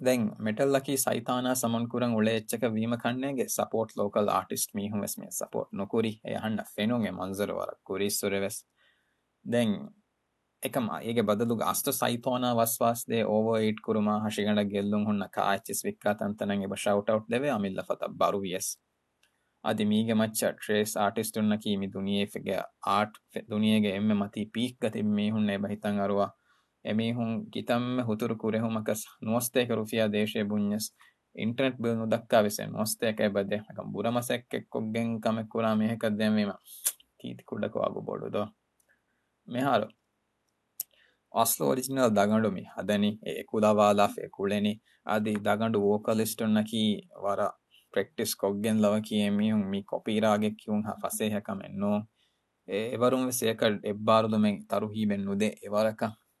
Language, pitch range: Urdu, 105-115 Hz